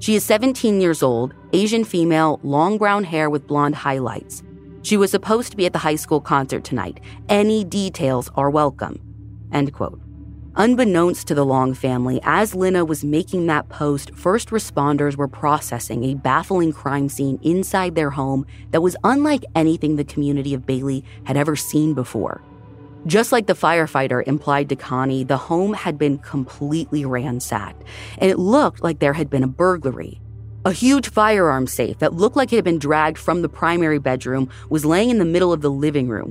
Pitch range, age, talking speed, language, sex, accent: 135-175 Hz, 30-49, 180 wpm, English, female, American